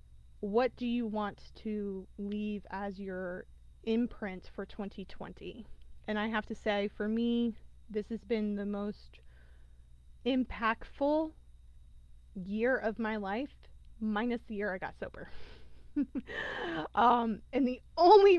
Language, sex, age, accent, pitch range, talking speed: English, female, 20-39, American, 190-235 Hz, 125 wpm